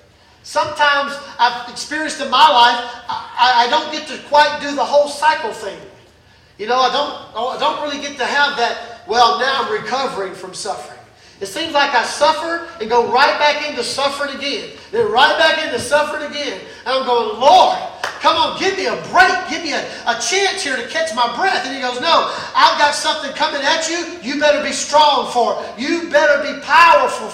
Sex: male